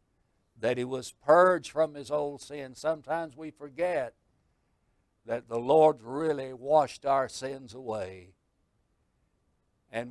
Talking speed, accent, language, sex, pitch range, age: 120 wpm, American, English, male, 120-160 Hz, 60-79